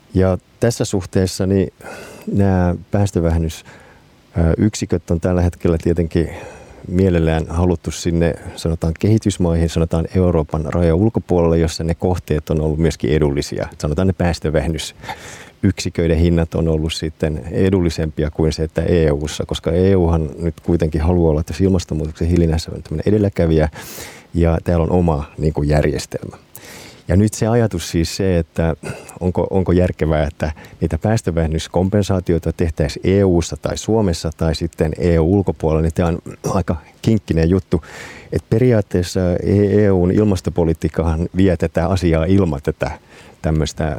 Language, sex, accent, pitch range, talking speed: Finnish, male, native, 80-95 Hz, 125 wpm